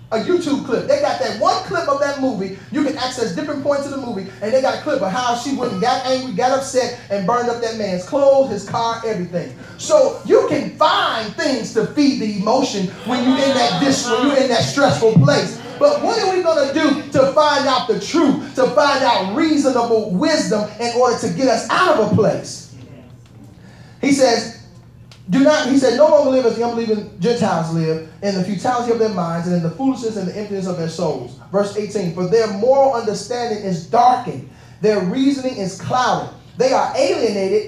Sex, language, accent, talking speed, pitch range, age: male, English, American, 210 wpm, 205-280 Hz, 30-49